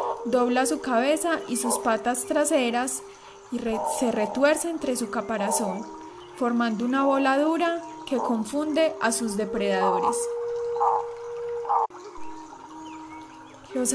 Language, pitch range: Spanish, 230-320 Hz